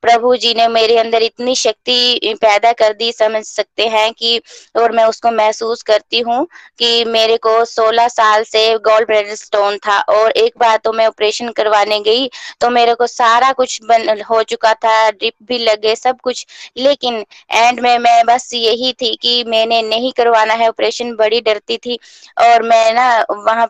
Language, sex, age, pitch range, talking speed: Hindi, female, 20-39, 220-240 Hz, 180 wpm